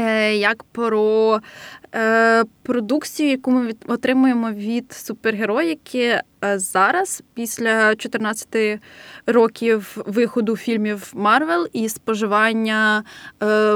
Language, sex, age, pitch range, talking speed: Ukrainian, female, 20-39, 215-260 Hz, 85 wpm